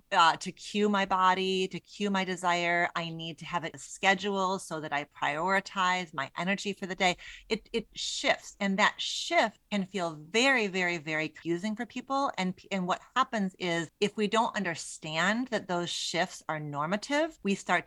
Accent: American